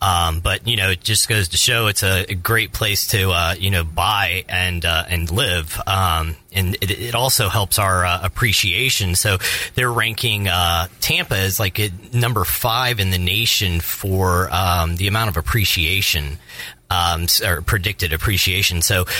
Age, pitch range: 30-49, 90-115 Hz